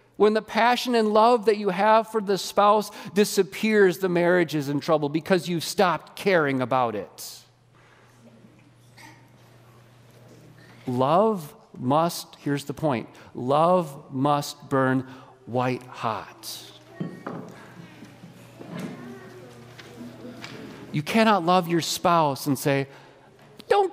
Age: 40-59